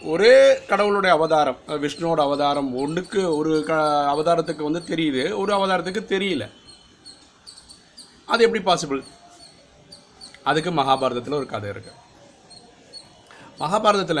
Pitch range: 145-190 Hz